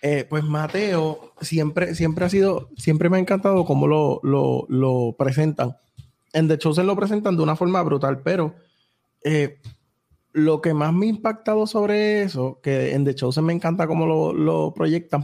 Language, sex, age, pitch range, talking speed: Spanish, male, 20-39, 135-165 Hz, 175 wpm